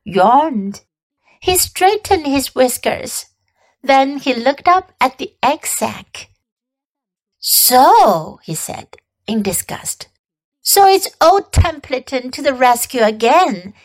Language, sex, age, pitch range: Chinese, female, 60-79, 250-345 Hz